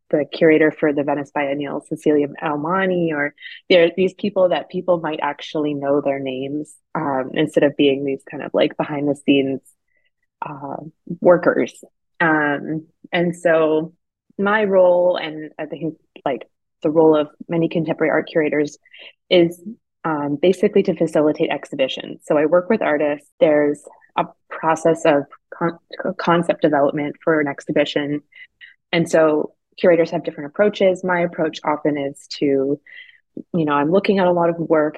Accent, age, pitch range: American, 20-39, 150-175 Hz